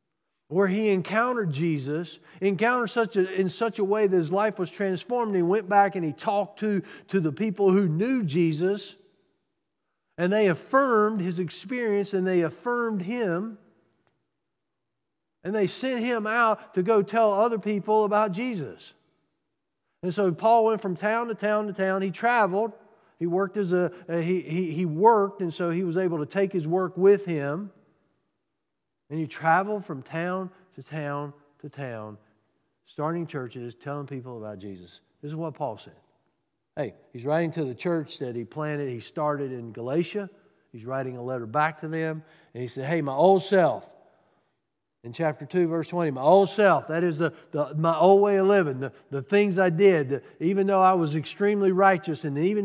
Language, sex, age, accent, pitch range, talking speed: English, male, 50-69, American, 155-205 Hz, 180 wpm